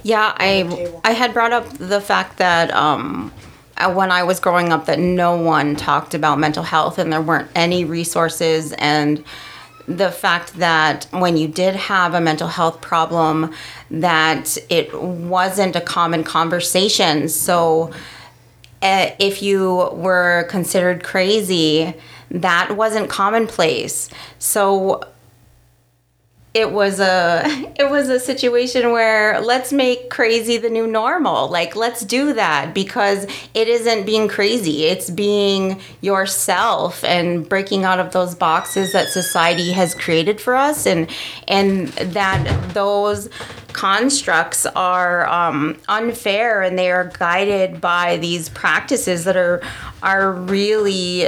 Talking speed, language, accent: 130 wpm, English, American